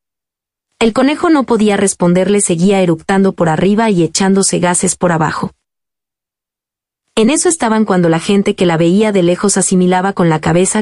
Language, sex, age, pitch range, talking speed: Spanish, female, 30-49, 180-215 Hz, 160 wpm